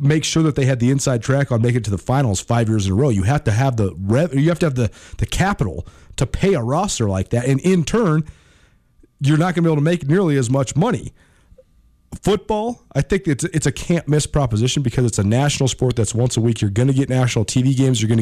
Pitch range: 115-155 Hz